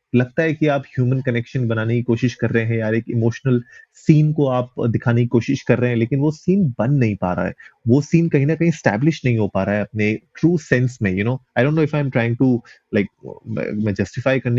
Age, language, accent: 30-49, Hindi, native